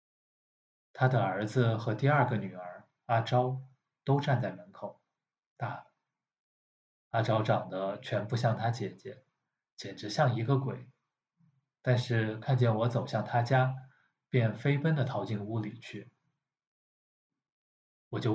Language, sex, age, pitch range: Chinese, male, 20-39, 105-135 Hz